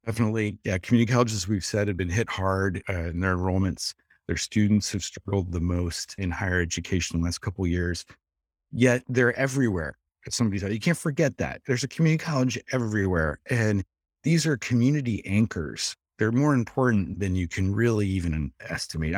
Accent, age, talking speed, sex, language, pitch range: American, 30-49, 185 wpm, male, English, 90-125 Hz